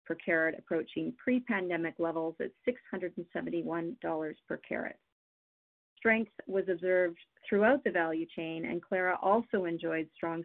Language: English